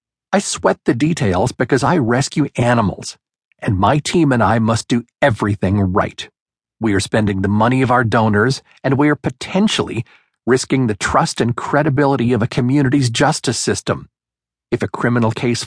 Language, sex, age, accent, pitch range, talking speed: English, male, 50-69, American, 110-135 Hz, 165 wpm